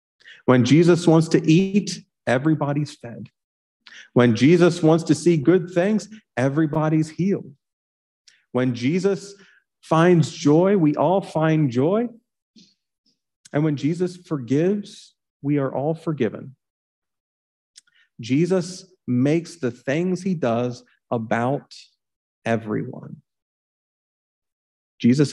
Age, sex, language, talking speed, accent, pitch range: 40-59, male, English, 95 wpm, American, 115-175 Hz